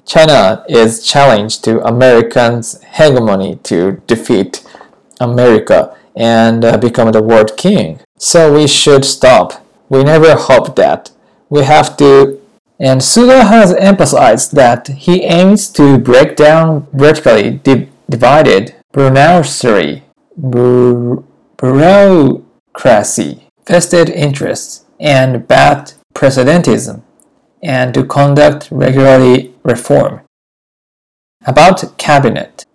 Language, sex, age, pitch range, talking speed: English, male, 20-39, 125-170 Hz, 95 wpm